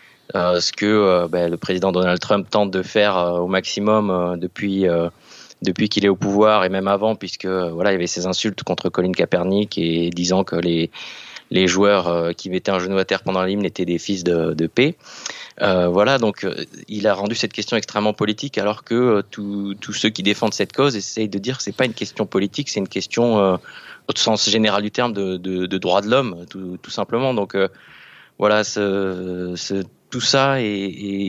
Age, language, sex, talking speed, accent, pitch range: 20-39, French, male, 215 wpm, French, 90-110 Hz